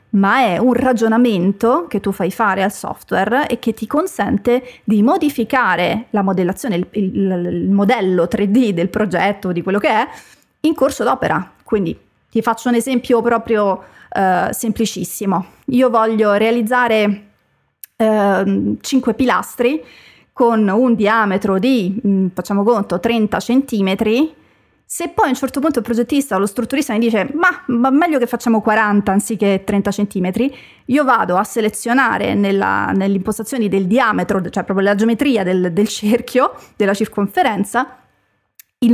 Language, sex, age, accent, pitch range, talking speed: Italian, female, 30-49, native, 200-245 Hz, 145 wpm